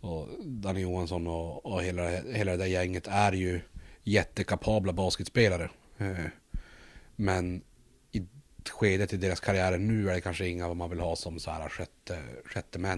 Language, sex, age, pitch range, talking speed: Swedish, male, 30-49, 90-105 Hz, 155 wpm